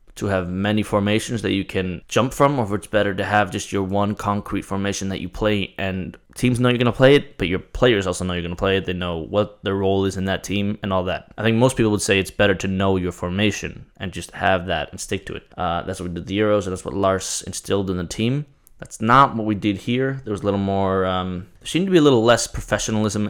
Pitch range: 95-110 Hz